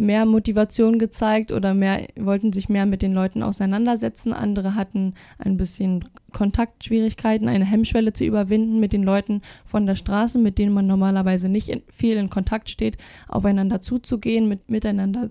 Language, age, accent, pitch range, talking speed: German, 20-39, German, 195-225 Hz, 160 wpm